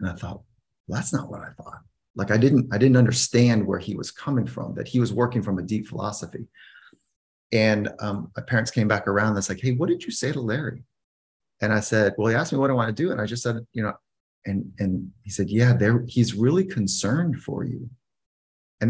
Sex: male